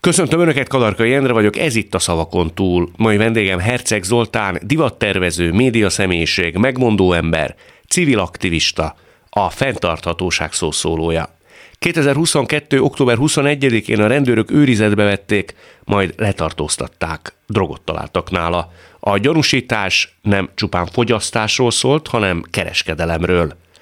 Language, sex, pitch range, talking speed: Hungarian, male, 85-115 Hz, 110 wpm